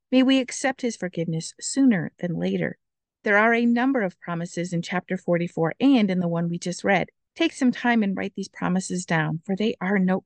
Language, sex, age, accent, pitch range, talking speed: English, female, 50-69, American, 180-235 Hz, 210 wpm